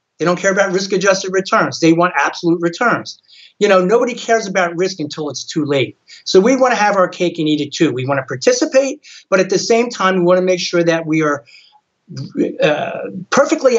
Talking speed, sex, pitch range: 220 wpm, male, 165-225 Hz